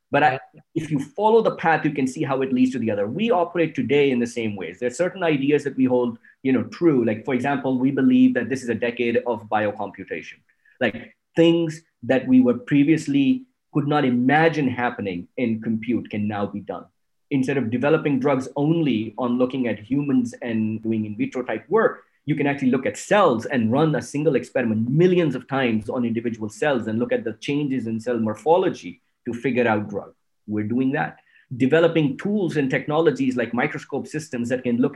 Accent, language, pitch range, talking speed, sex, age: Indian, English, 120-160 Hz, 200 wpm, male, 20-39